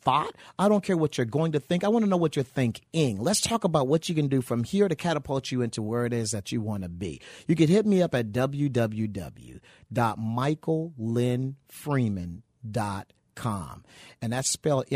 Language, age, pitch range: English, 50-69, 110-140 Hz